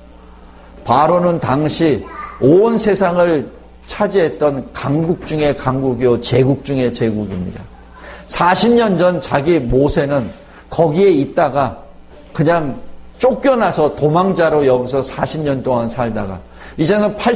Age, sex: 50-69, male